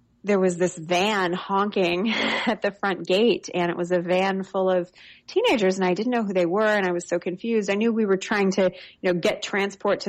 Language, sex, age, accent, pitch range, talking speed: English, female, 20-39, American, 170-190 Hz, 240 wpm